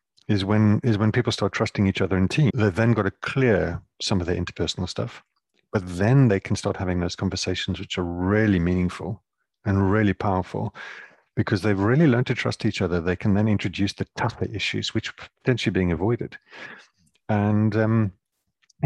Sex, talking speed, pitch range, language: male, 180 wpm, 95-115 Hz, English